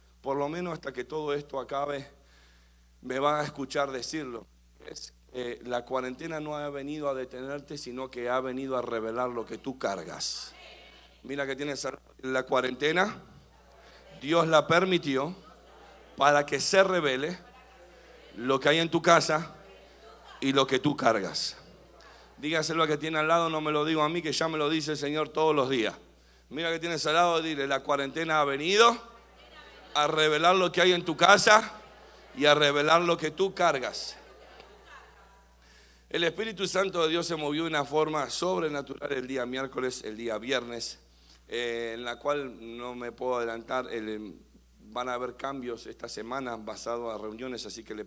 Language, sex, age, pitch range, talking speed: Spanish, male, 50-69, 120-155 Hz, 170 wpm